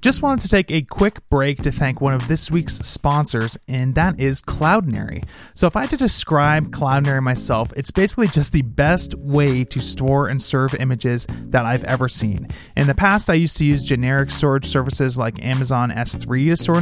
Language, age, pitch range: English, 30-49, 125-165 Hz